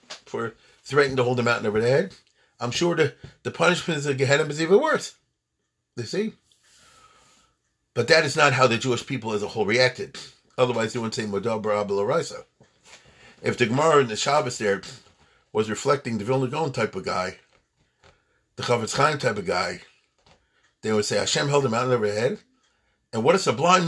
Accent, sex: American, male